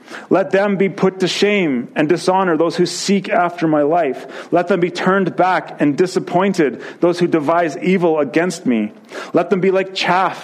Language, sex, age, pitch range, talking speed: English, male, 30-49, 170-195 Hz, 185 wpm